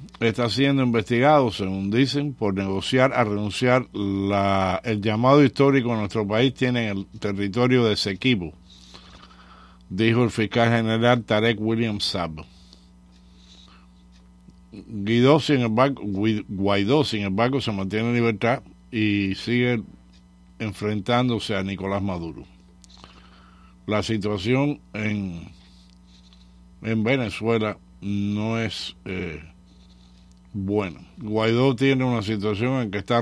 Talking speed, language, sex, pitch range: 110 wpm, English, male, 90-120 Hz